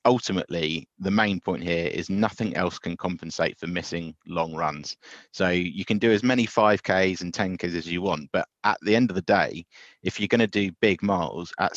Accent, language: British, English